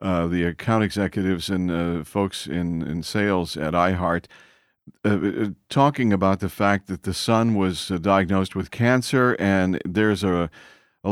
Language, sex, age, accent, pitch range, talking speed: English, male, 50-69, American, 90-115 Hz, 160 wpm